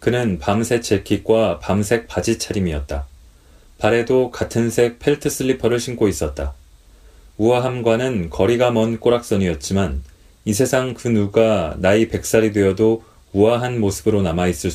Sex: male